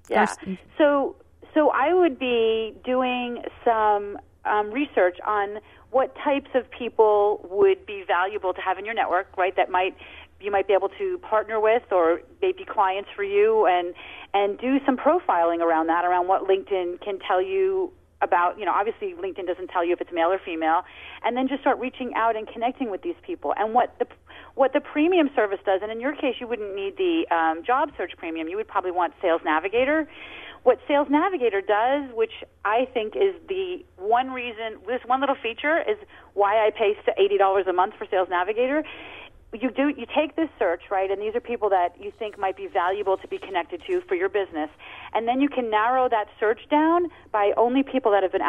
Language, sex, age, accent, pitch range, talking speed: English, female, 30-49, American, 185-285 Hz, 205 wpm